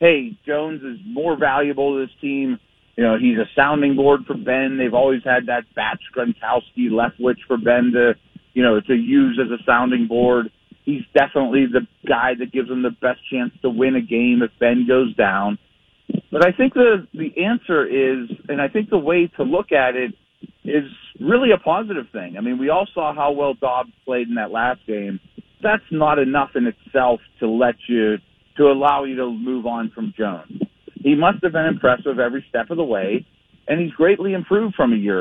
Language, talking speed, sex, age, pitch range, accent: English, 205 wpm, male, 40-59, 120-155 Hz, American